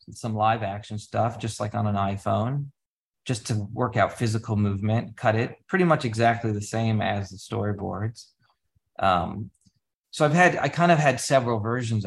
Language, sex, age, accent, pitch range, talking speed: English, male, 30-49, American, 105-125 Hz, 175 wpm